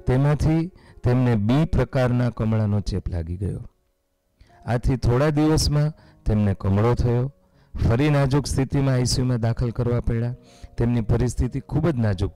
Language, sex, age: Gujarati, male, 40-59